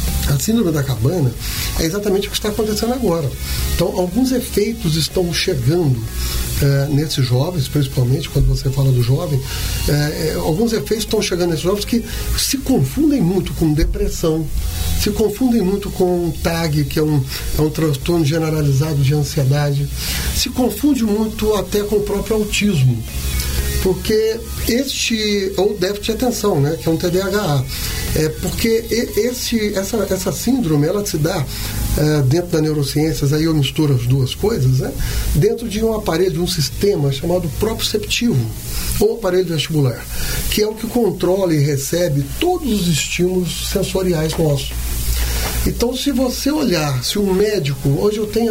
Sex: male